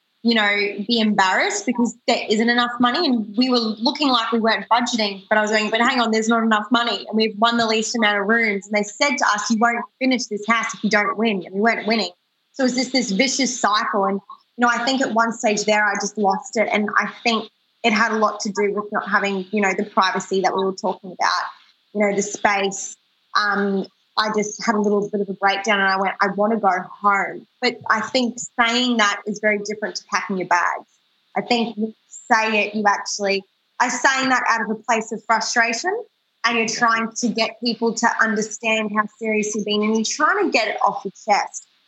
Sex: female